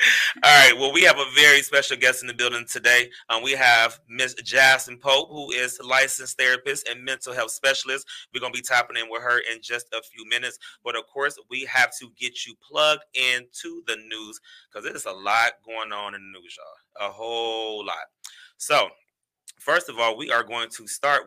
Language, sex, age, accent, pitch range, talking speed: English, male, 30-49, American, 110-135 Hz, 215 wpm